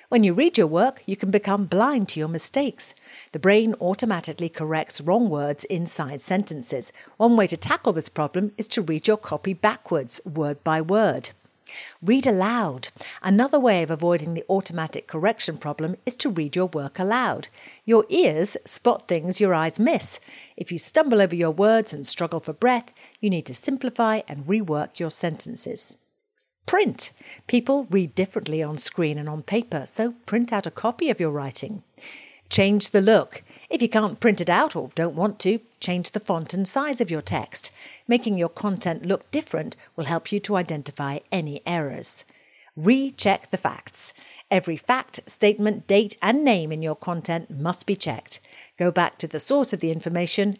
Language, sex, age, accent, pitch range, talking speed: English, female, 50-69, British, 165-225 Hz, 175 wpm